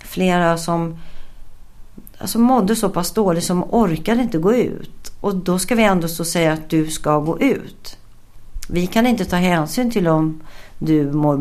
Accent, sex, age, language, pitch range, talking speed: native, female, 50-69, Swedish, 150-195 Hz, 175 wpm